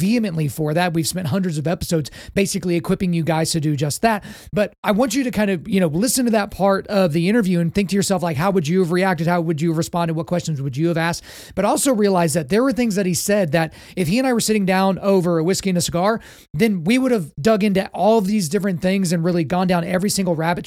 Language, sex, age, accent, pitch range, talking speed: English, male, 30-49, American, 170-195 Hz, 275 wpm